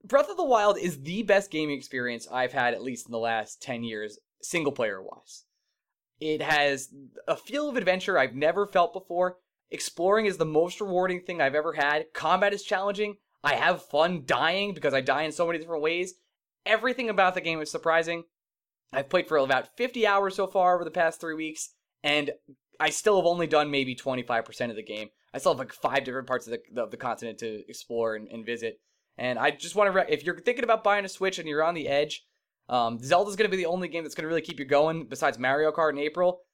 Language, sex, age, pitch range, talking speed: English, male, 20-39, 125-180 Hz, 220 wpm